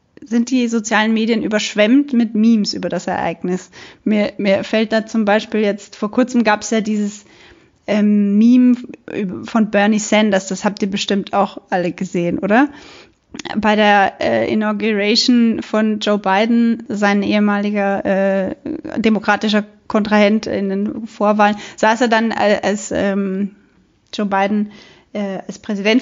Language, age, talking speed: German, 20-39, 140 wpm